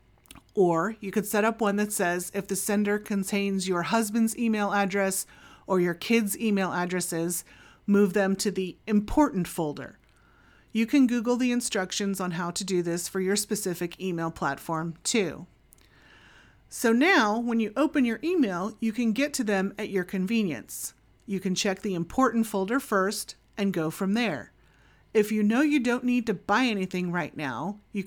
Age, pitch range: 30-49, 180-230 Hz